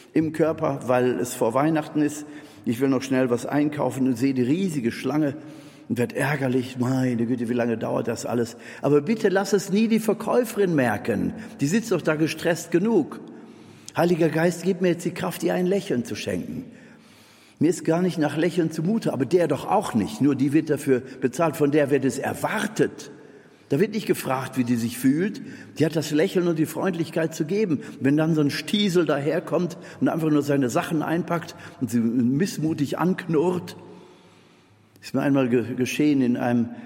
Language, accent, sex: German, German, male